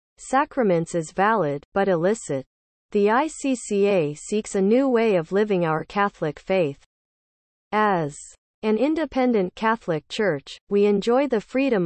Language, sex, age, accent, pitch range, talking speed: English, female, 40-59, American, 165-230 Hz, 125 wpm